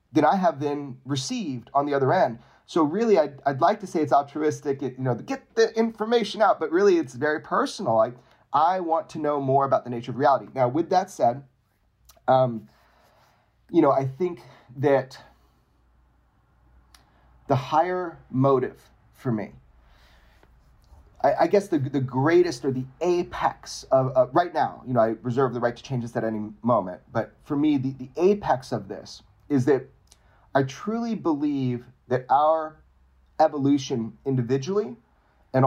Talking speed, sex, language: 165 wpm, male, English